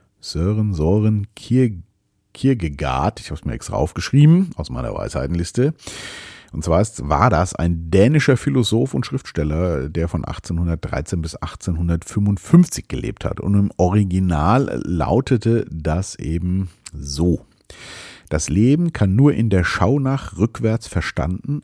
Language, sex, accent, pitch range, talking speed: German, male, German, 85-120 Hz, 125 wpm